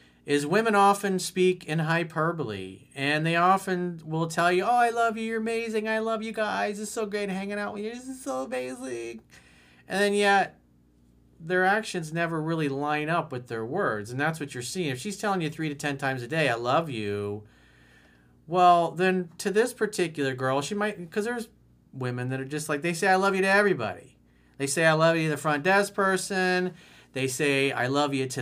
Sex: male